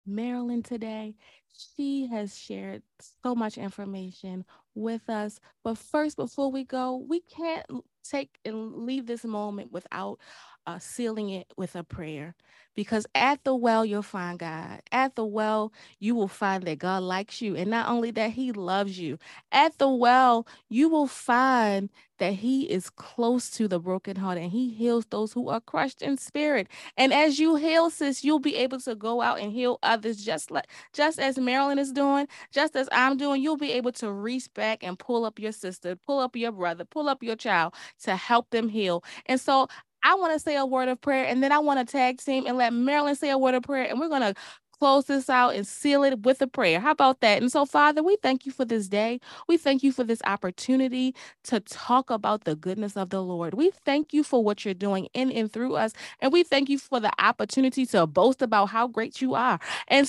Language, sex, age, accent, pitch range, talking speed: English, female, 20-39, American, 215-275 Hz, 215 wpm